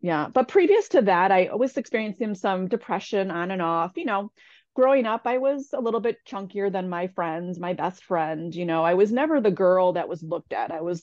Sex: female